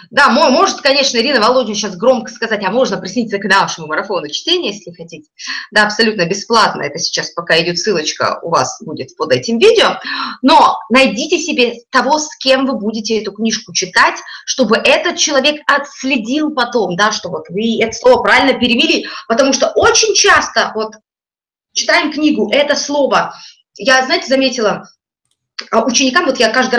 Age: 20-39